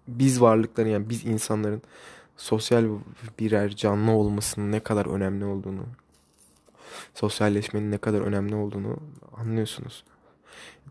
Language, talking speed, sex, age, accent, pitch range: Turkish, 110 wpm, male, 20-39, native, 105-120 Hz